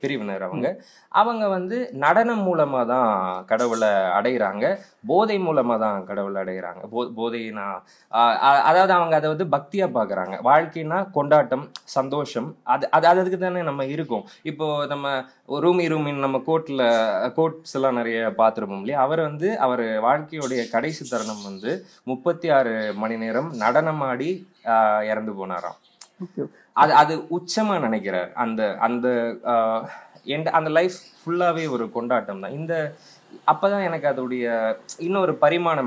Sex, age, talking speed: male, 20-39, 125 wpm